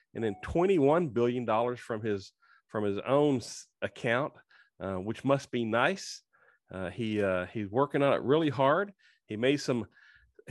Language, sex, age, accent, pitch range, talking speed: English, male, 40-59, American, 110-150 Hz, 160 wpm